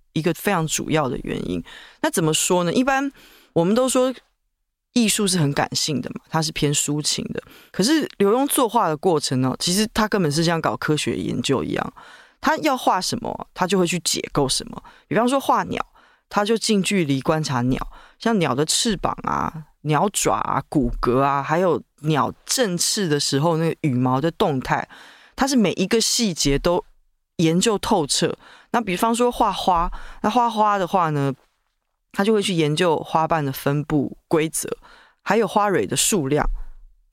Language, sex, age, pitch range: Chinese, female, 20-39, 150-225 Hz